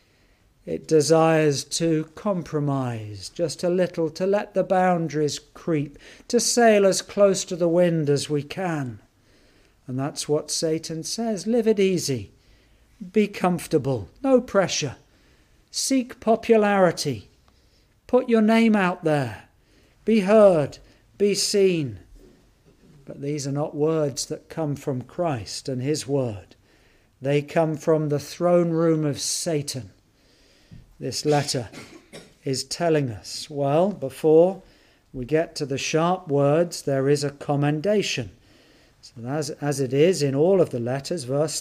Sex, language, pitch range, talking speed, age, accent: male, English, 140-180 Hz, 135 wpm, 50-69, British